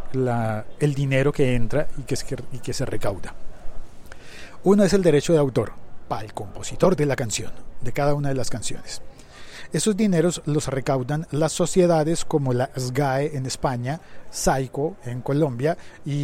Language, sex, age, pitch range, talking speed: Spanish, male, 40-59, 125-165 Hz, 170 wpm